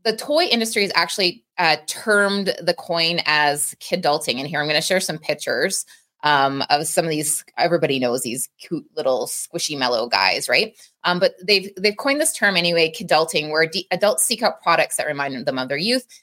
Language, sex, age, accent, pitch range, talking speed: English, female, 20-39, American, 155-195 Hz, 200 wpm